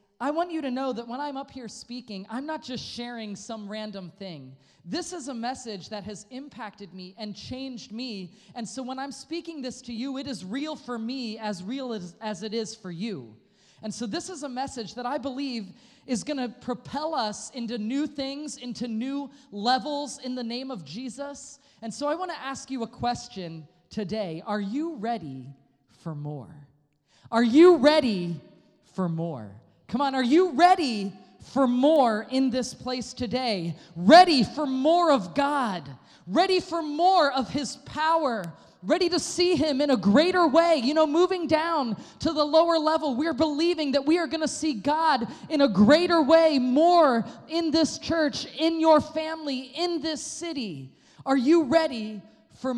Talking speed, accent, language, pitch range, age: 180 wpm, American, English, 210-305 Hz, 20-39